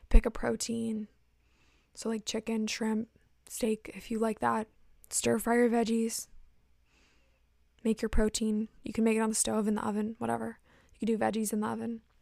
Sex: female